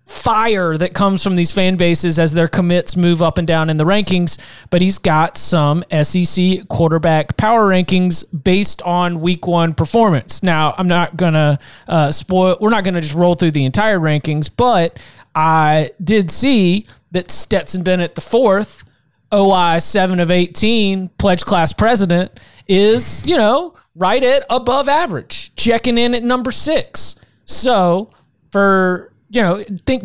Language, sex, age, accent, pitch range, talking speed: English, male, 30-49, American, 175-210 Hz, 160 wpm